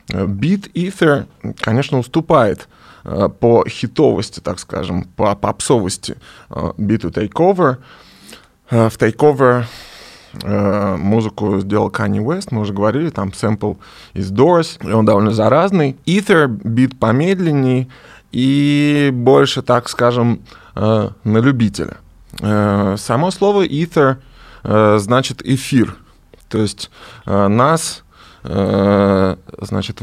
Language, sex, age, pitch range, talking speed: Russian, male, 20-39, 100-130 Hz, 95 wpm